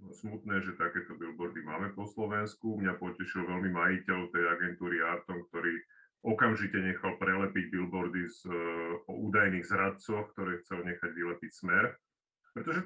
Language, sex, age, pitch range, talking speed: Slovak, male, 30-49, 95-115 Hz, 135 wpm